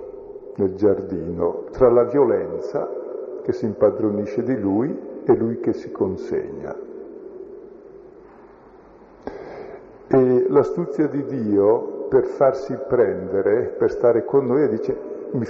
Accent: native